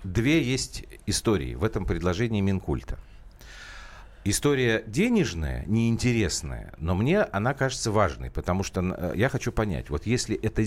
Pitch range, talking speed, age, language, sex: 85-130 Hz, 130 wpm, 50-69, Russian, male